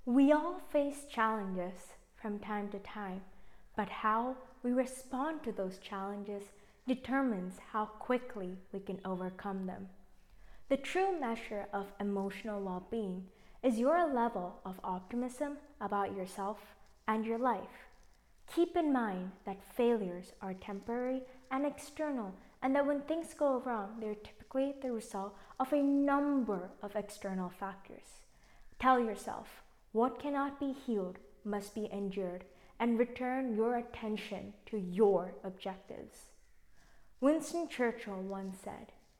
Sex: female